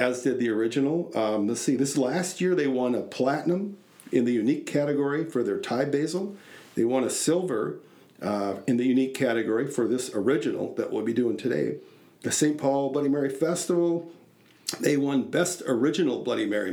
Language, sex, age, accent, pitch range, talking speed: English, male, 50-69, American, 125-165 Hz, 180 wpm